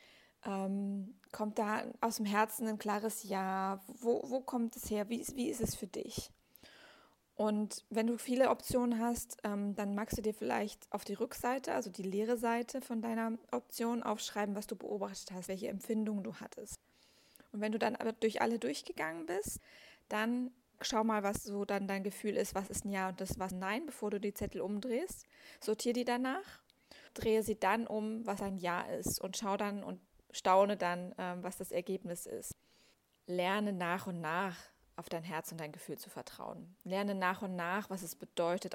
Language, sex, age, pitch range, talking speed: German, female, 20-39, 190-225 Hz, 190 wpm